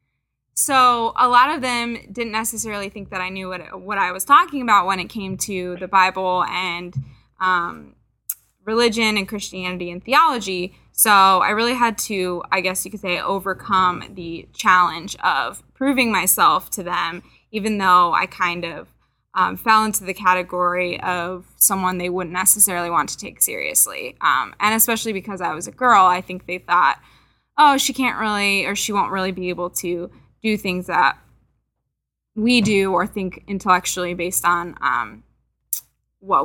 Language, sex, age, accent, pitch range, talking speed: English, female, 10-29, American, 180-220 Hz, 165 wpm